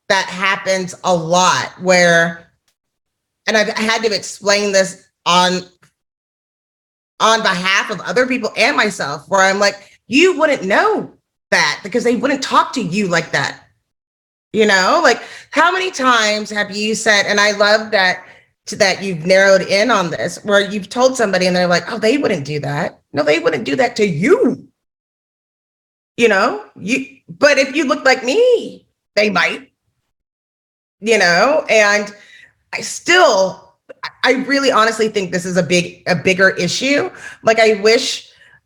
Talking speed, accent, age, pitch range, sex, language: 160 wpm, American, 30-49, 175-225 Hz, female, English